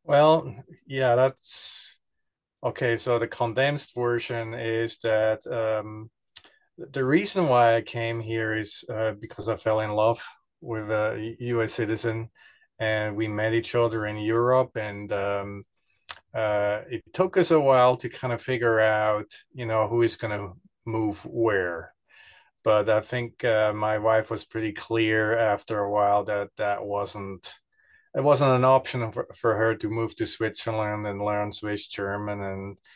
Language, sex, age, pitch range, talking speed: English, male, 30-49, 110-120 Hz, 160 wpm